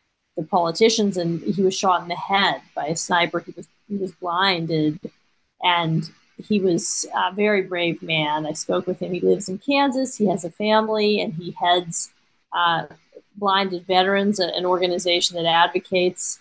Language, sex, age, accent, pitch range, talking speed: English, female, 40-59, American, 170-200 Hz, 170 wpm